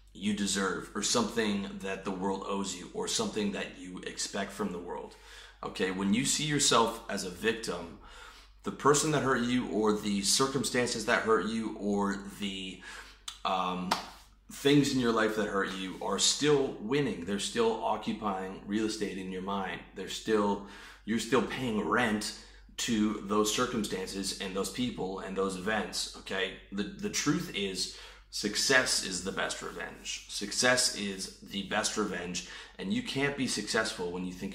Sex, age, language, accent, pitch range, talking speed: male, 30-49, English, American, 95-115 Hz, 165 wpm